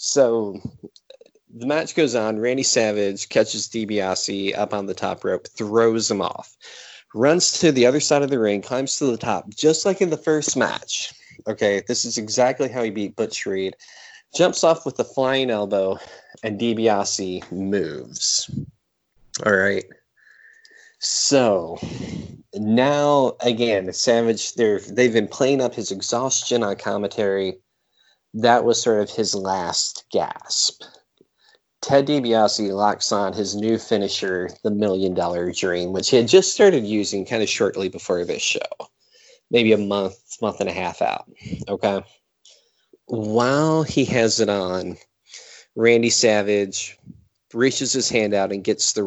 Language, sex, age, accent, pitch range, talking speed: English, male, 30-49, American, 100-130 Hz, 145 wpm